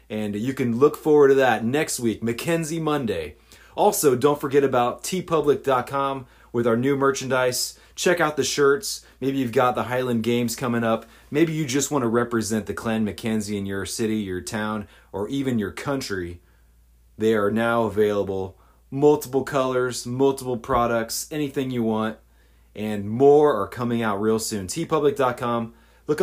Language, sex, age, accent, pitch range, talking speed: English, male, 30-49, American, 100-140 Hz, 160 wpm